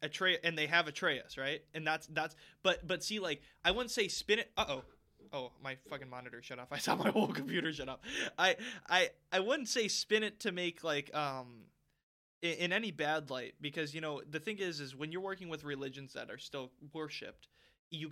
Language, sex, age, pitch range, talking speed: English, male, 20-39, 135-165 Hz, 220 wpm